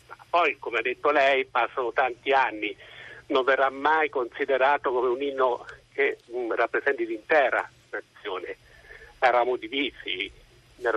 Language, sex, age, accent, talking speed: Italian, male, 50-69, native, 120 wpm